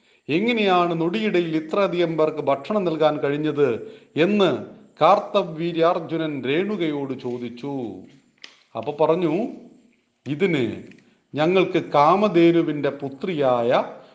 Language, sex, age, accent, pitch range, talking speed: Hindi, male, 40-59, native, 145-190 Hz, 55 wpm